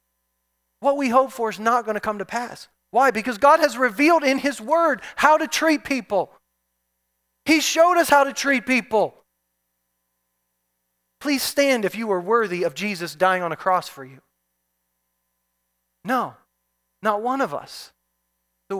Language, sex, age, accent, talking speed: English, male, 30-49, American, 155 wpm